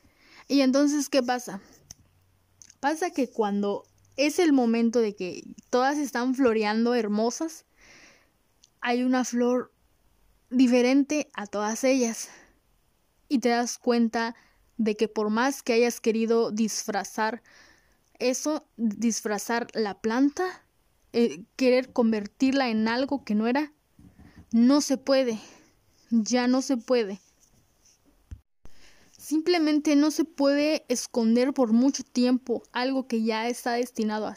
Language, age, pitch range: Spanish, 10-29, 225-275 Hz